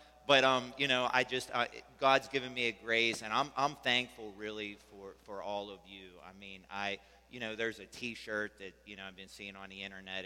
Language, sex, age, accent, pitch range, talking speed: English, male, 30-49, American, 105-125 Hz, 230 wpm